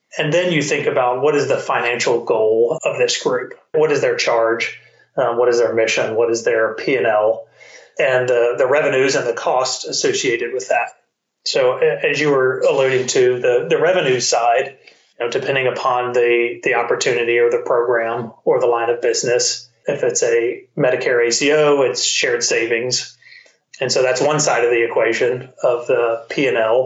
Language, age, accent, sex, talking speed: English, 30-49, American, male, 180 wpm